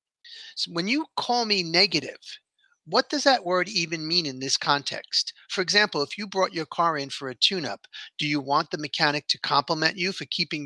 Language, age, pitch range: English, 40-59, 145-185 Hz